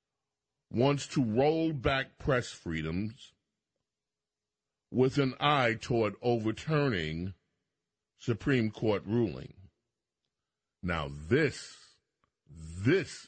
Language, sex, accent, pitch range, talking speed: English, male, American, 105-145 Hz, 75 wpm